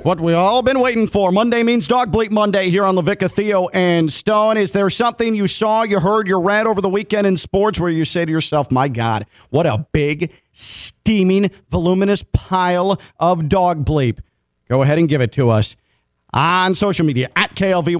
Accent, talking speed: American, 205 wpm